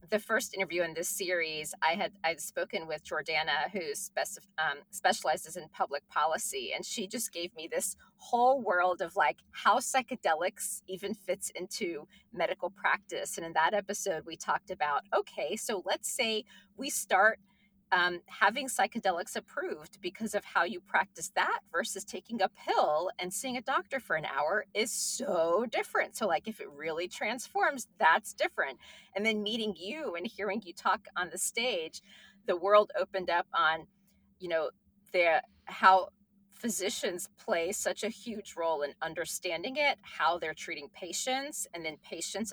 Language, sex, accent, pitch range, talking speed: English, female, American, 170-220 Hz, 165 wpm